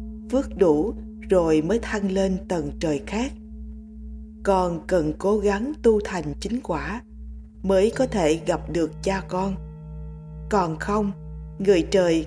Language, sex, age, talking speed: Vietnamese, female, 20-39, 135 wpm